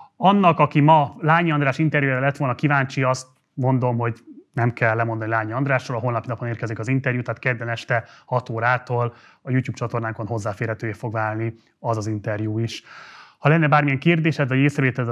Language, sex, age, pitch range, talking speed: Hungarian, male, 30-49, 115-140 Hz, 170 wpm